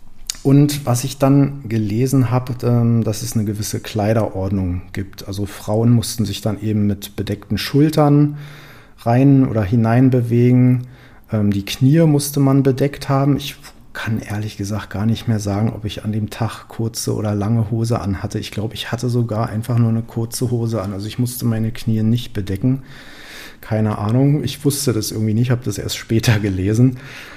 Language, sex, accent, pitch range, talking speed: German, male, German, 105-125 Hz, 170 wpm